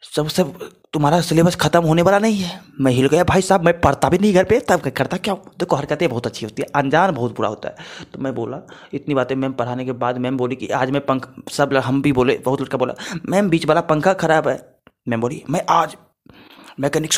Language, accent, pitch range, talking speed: Hindi, native, 125-150 Hz, 240 wpm